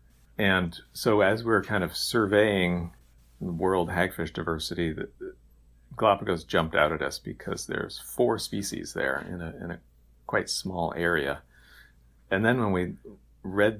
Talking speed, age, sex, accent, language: 155 wpm, 40-59, male, American, English